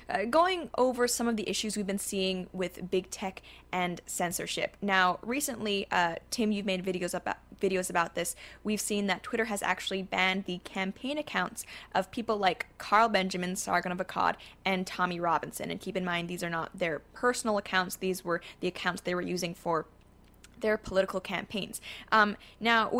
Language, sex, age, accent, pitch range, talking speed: English, female, 20-39, American, 180-210 Hz, 185 wpm